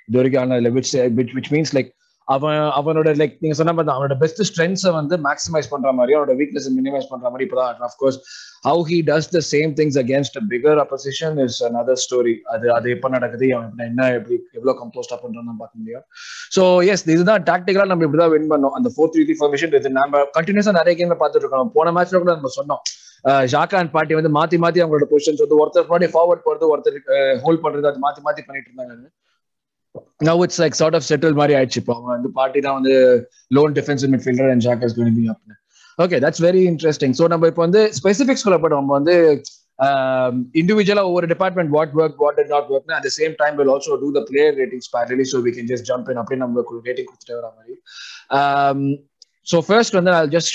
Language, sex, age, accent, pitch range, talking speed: Tamil, male, 20-39, native, 135-180 Hz, 135 wpm